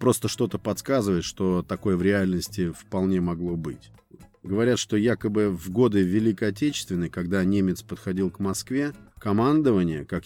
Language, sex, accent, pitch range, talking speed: Russian, male, native, 95-110 Hz, 140 wpm